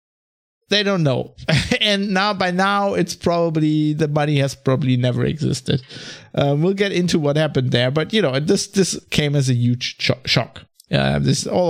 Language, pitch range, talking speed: English, 130-165 Hz, 185 wpm